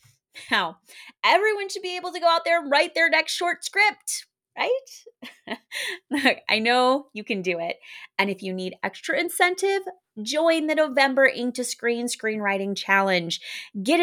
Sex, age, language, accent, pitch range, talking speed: female, 20-39, English, American, 195-290 Hz, 165 wpm